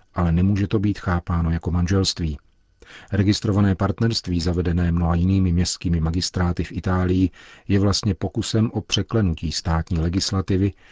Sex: male